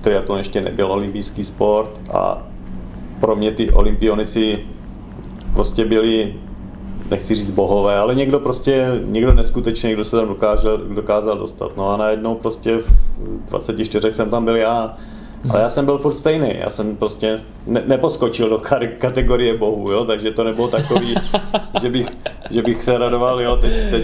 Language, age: Czech, 40-59